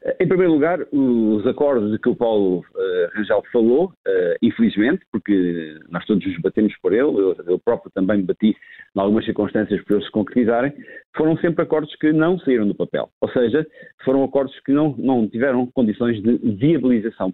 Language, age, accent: Portuguese, 50-69, Portuguese